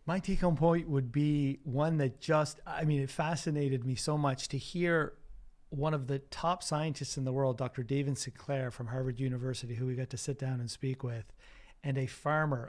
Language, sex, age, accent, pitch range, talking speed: English, male, 30-49, American, 130-150 Hz, 210 wpm